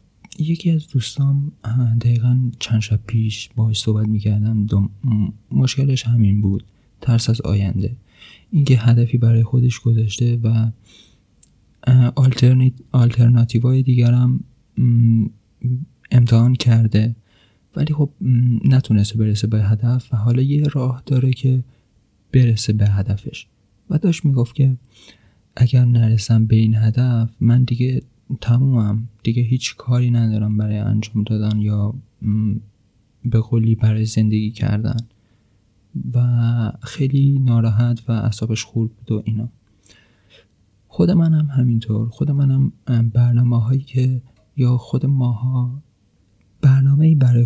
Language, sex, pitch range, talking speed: Persian, male, 110-125 Hz, 115 wpm